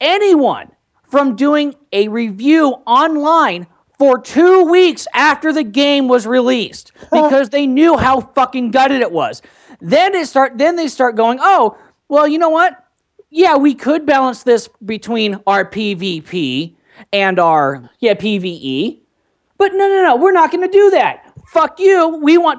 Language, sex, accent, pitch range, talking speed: English, male, American, 200-290 Hz, 155 wpm